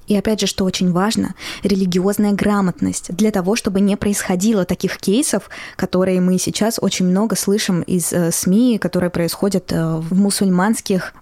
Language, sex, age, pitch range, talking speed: Russian, female, 20-39, 180-210 Hz, 155 wpm